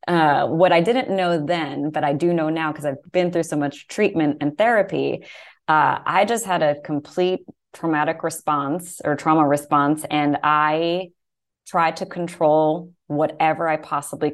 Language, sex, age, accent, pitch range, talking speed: English, female, 20-39, American, 150-180 Hz, 165 wpm